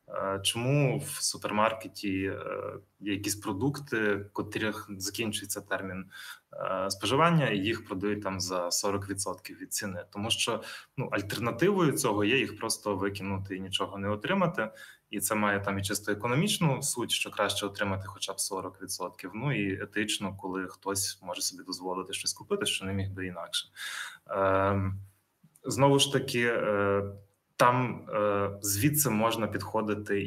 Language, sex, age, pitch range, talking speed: Russian, male, 20-39, 100-120 Hz, 130 wpm